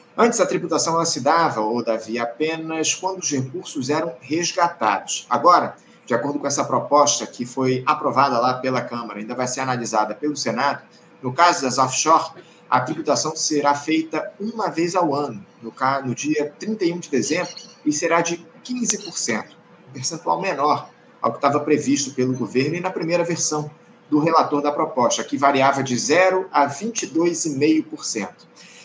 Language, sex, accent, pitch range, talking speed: Portuguese, male, Brazilian, 135-180 Hz, 155 wpm